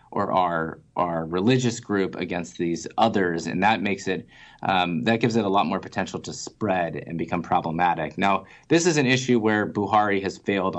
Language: English